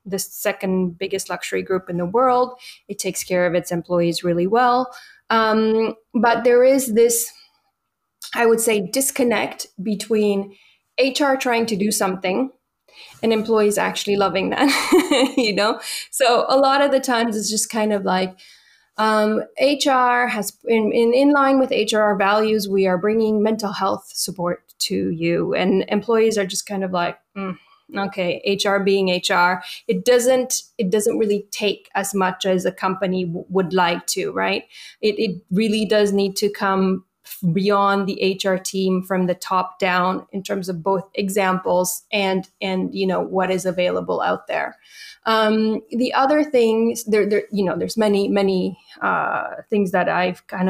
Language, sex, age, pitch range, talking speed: English, female, 20-39, 190-230 Hz, 165 wpm